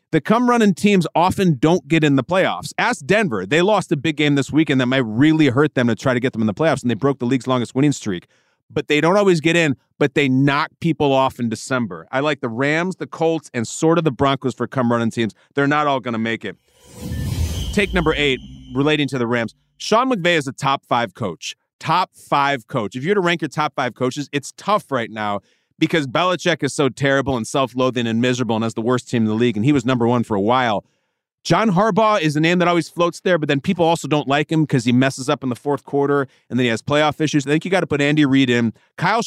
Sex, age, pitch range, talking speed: male, 30-49, 125-160 Hz, 250 wpm